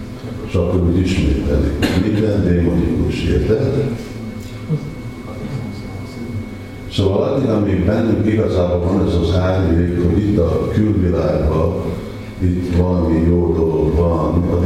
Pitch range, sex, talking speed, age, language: 85-105 Hz, male, 105 wpm, 50-69, Hungarian